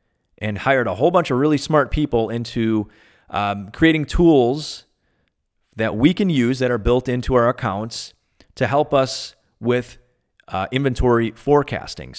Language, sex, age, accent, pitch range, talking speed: English, male, 30-49, American, 105-130 Hz, 150 wpm